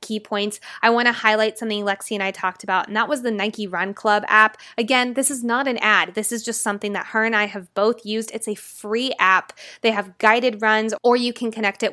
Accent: American